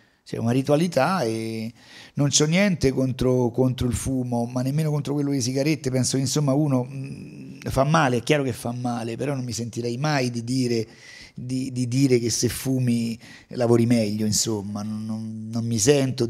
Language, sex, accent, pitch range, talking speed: Italian, male, native, 115-135 Hz, 175 wpm